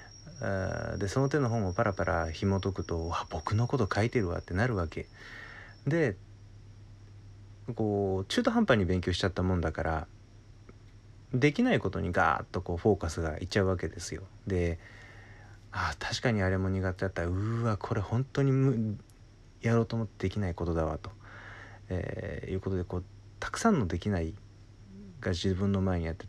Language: Japanese